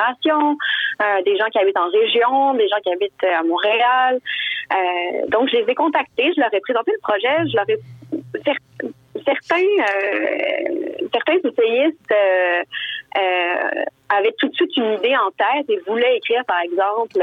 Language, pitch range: French, 190-310 Hz